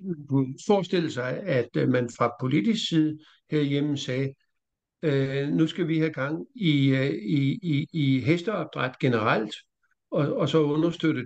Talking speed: 135 wpm